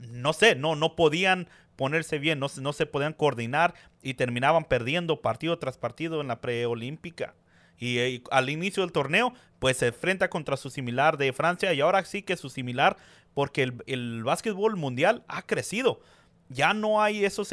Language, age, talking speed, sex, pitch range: Spanish, 30-49, 180 wpm, male, 125-175 Hz